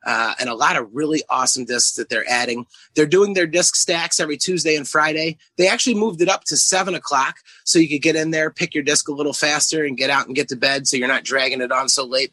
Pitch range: 135-165 Hz